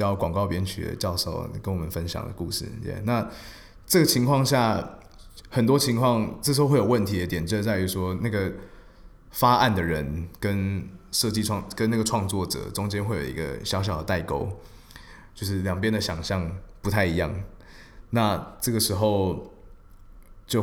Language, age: Chinese, 20-39